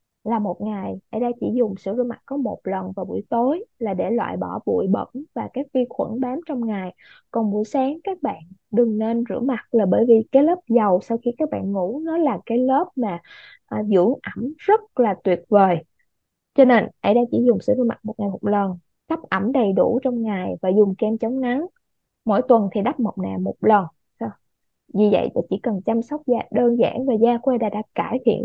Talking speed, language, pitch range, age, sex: 230 wpm, Vietnamese, 215-275 Hz, 20-39, female